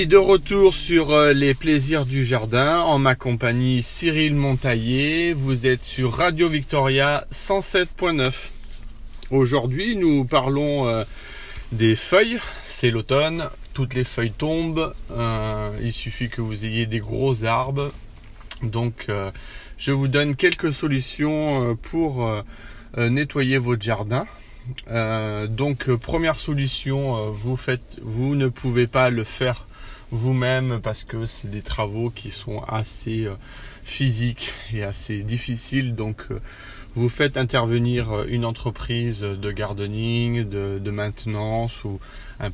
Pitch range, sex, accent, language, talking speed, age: 110-135 Hz, male, French, French, 130 wpm, 30-49